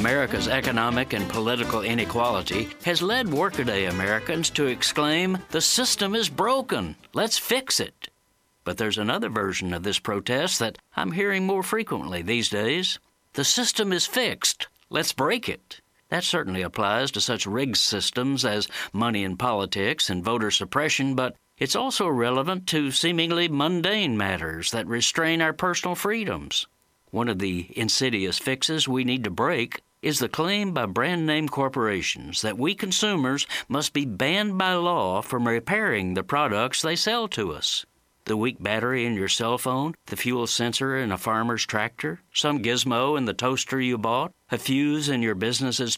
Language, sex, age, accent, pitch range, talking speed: English, male, 60-79, American, 110-160 Hz, 160 wpm